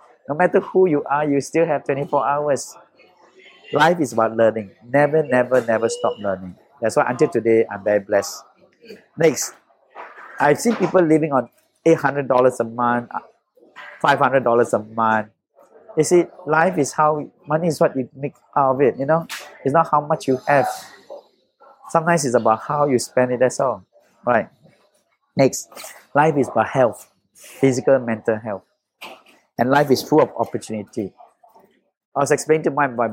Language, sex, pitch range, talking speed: English, male, 120-160 Hz, 160 wpm